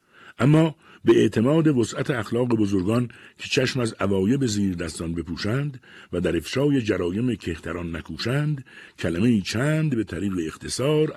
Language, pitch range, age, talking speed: Persian, 85-130 Hz, 60-79, 130 wpm